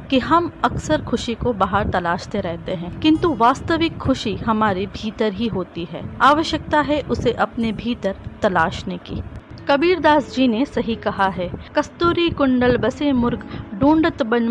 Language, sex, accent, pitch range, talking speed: Hindi, female, native, 215-285 Hz, 155 wpm